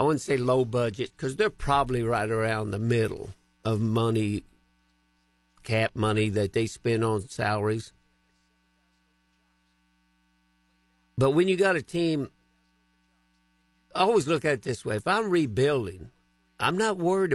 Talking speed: 140 wpm